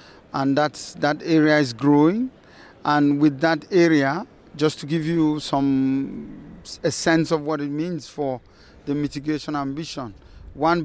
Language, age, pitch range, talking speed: English, 40-59, 145-165 Hz, 145 wpm